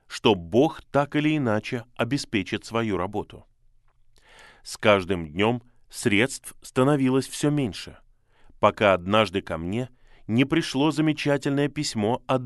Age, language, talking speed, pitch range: 20-39, Russian, 115 wpm, 105-130 Hz